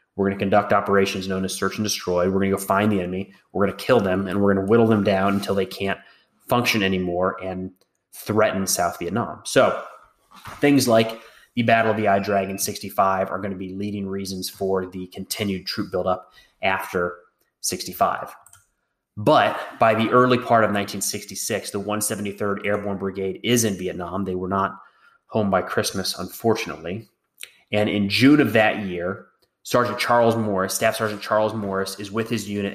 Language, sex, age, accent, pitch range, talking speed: English, male, 30-49, American, 95-115 Hz, 180 wpm